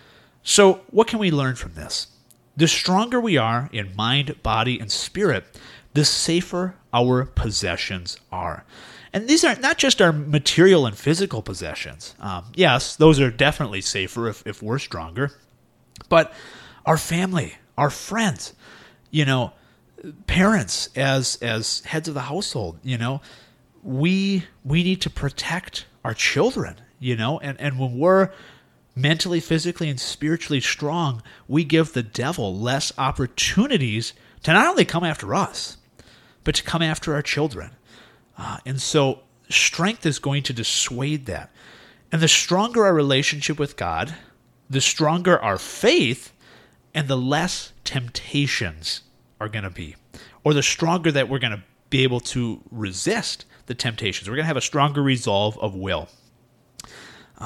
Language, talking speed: English, 145 wpm